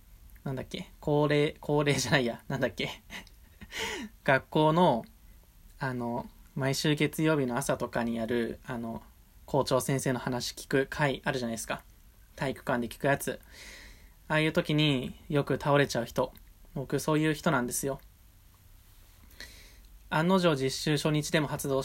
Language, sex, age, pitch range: Japanese, male, 20-39, 95-150 Hz